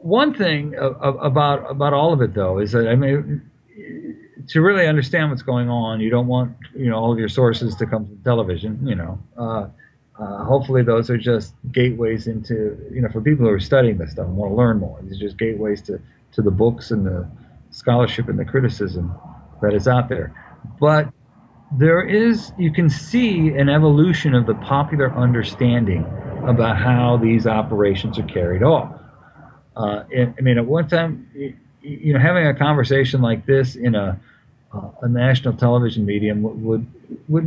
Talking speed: 185 wpm